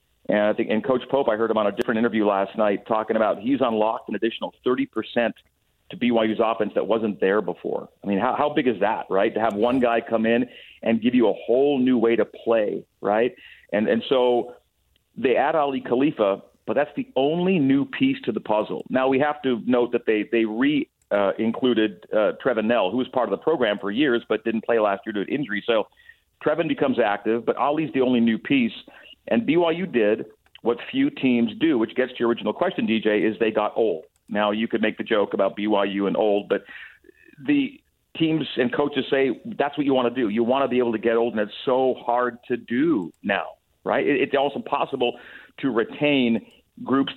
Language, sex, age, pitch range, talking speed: English, male, 40-59, 115-145 Hz, 220 wpm